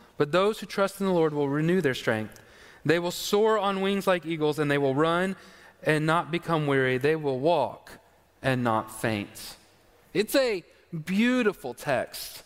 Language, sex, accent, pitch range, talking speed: English, male, American, 160-195 Hz, 175 wpm